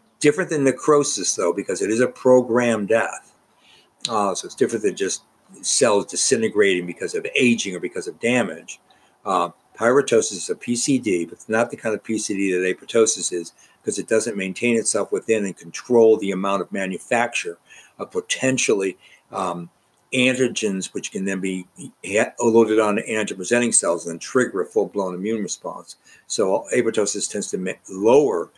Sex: male